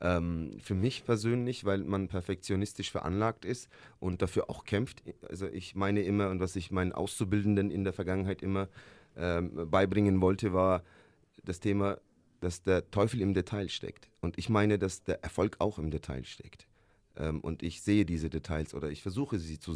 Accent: German